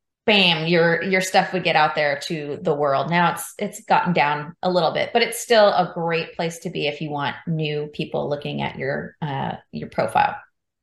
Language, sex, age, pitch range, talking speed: English, female, 30-49, 160-190 Hz, 210 wpm